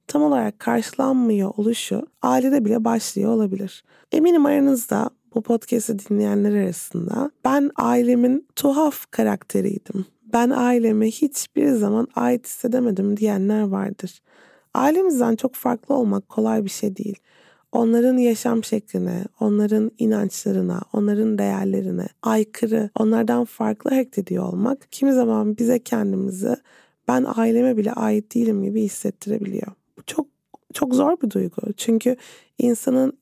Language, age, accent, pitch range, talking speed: Turkish, 30-49, native, 215-245 Hz, 115 wpm